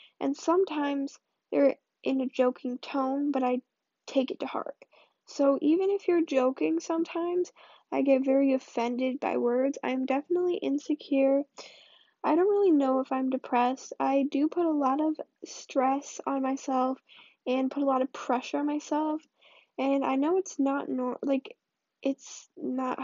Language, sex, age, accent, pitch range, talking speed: English, female, 10-29, American, 255-290 Hz, 160 wpm